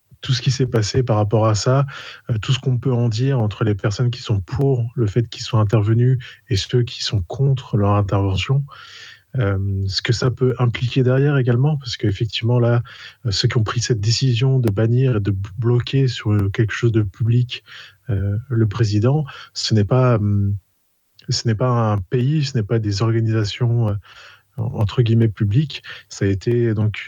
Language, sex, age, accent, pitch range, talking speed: French, male, 20-39, French, 105-130 Hz, 190 wpm